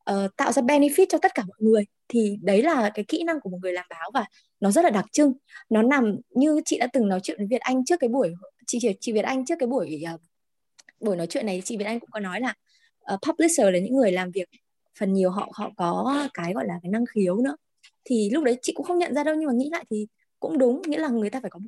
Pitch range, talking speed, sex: 195-275 Hz, 275 wpm, female